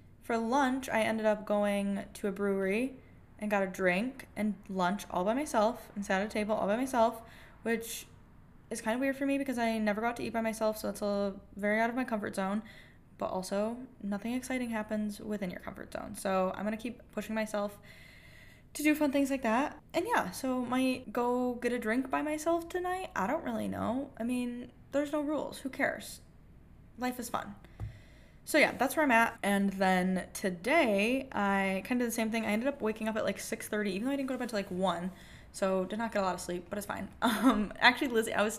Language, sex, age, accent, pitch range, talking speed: English, female, 10-29, American, 195-245 Hz, 230 wpm